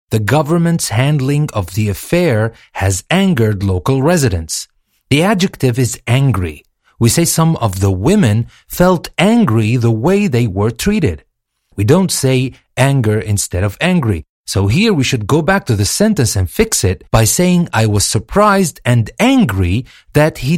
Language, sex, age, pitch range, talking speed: English, male, 40-59, 110-170 Hz, 160 wpm